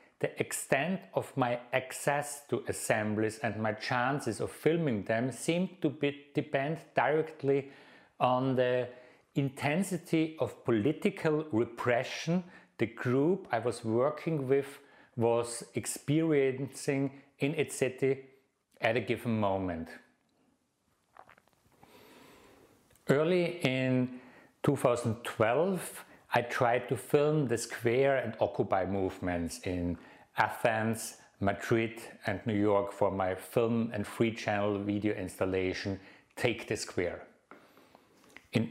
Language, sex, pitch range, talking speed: English, male, 110-145 Hz, 105 wpm